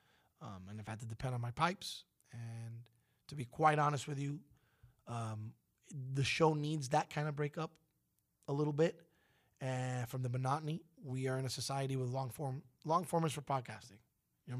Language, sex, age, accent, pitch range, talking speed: English, male, 30-49, American, 120-155 Hz, 175 wpm